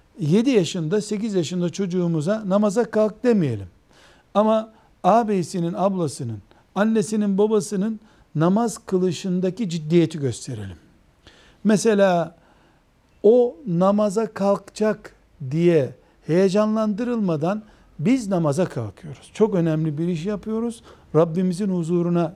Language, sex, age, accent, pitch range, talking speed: Turkish, male, 60-79, native, 160-215 Hz, 90 wpm